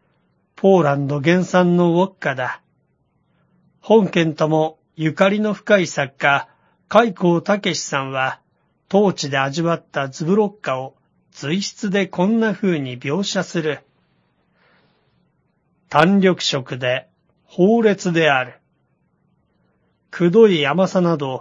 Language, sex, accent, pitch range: Japanese, male, native, 145-195 Hz